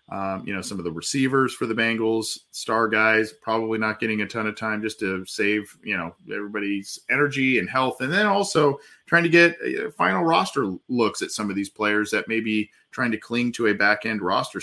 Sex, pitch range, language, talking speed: male, 100-115 Hz, English, 220 wpm